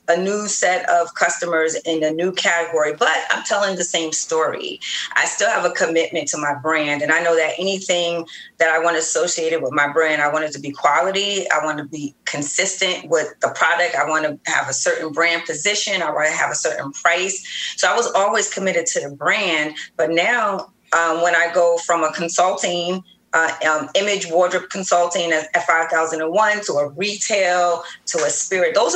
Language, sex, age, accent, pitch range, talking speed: English, female, 30-49, American, 160-195 Hz, 200 wpm